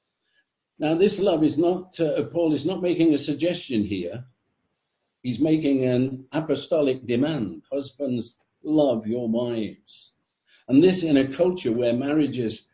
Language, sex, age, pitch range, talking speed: English, male, 60-79, 110-135 Hz, 135 wpm